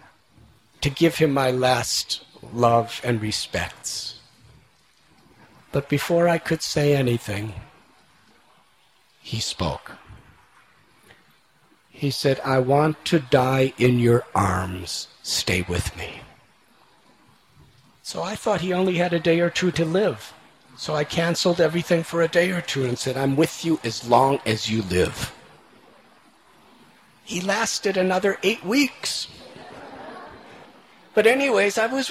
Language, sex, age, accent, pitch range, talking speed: English, male, 50-69, American, 130-215 Hz, 125 wpm